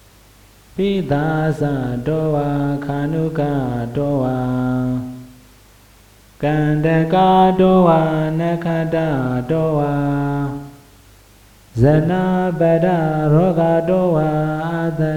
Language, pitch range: Vietnamese, 125-160 Hz